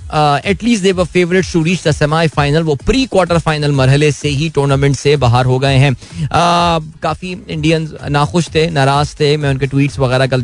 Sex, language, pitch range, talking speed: male, Hindi, 135-175 Hz, 145 wpm